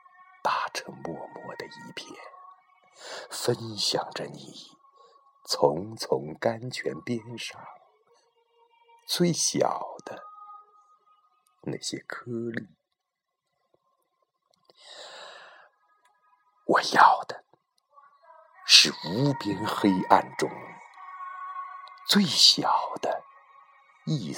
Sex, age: male, 60-79